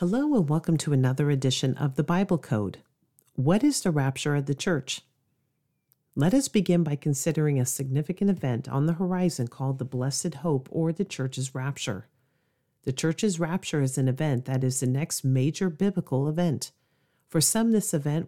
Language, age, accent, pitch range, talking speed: English, 40-59, American, 130-175 Hz, 175 wpm